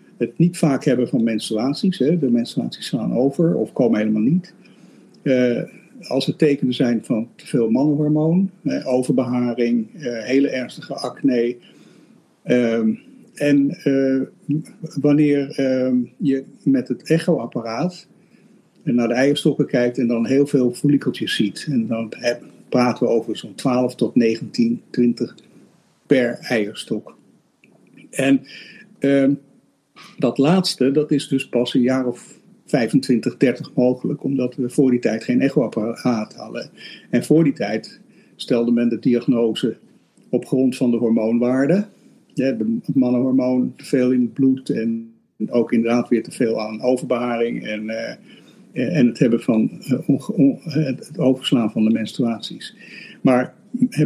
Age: 60-79